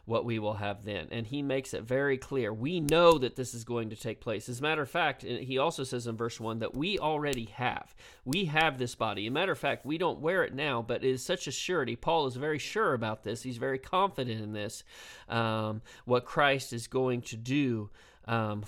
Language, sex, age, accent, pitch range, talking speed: English, male, 40-59, American, 115-135 Hz, 240 wpm